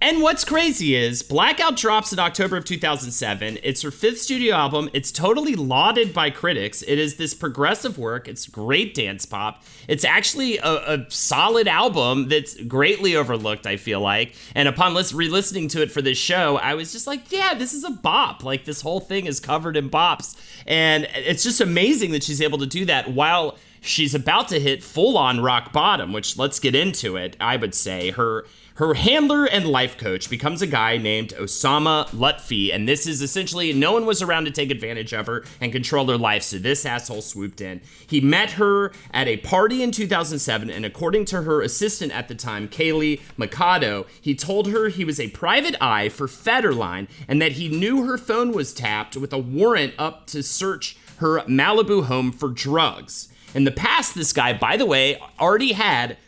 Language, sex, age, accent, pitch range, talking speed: English, male, 30-49, American, 125-190 Hz, 195 wpm